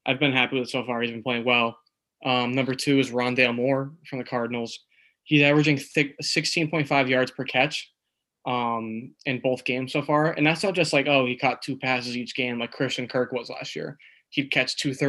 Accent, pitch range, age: American, 120-135 Hz, 10-29